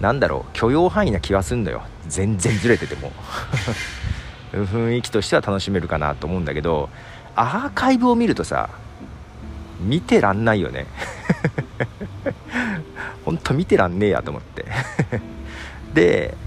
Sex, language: male, Japanese